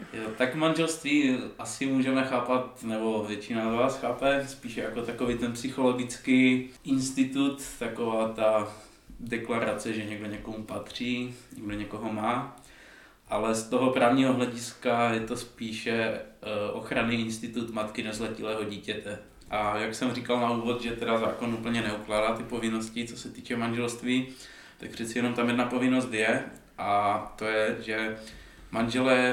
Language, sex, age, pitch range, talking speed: Czech, male, 20-39, 110-125 Hz, 140 wpm